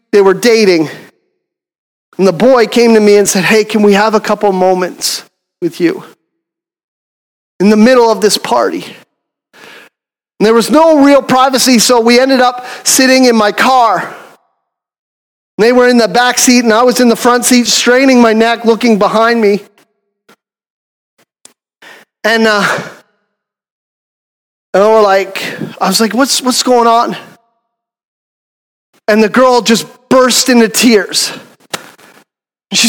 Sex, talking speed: male, 150 wpm